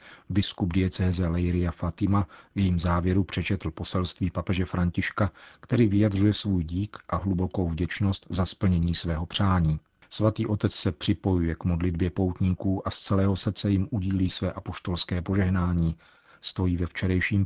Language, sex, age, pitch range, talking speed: Czech, male, 40-59, 85-100 Hz, 140 wpm